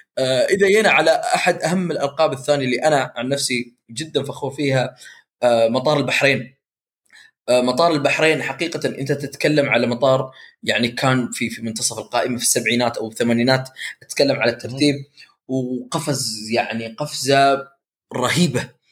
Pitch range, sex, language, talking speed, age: 120-145 Hz, male, Arabic, 135 wpm, 20-39